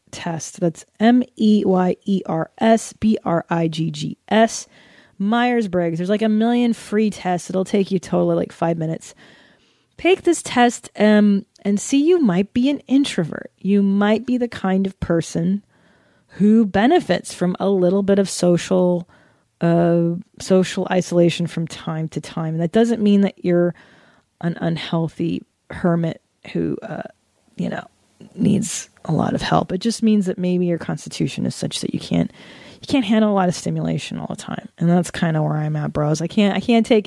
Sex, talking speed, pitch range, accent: female, 185 wpm, 165-210 Hz, American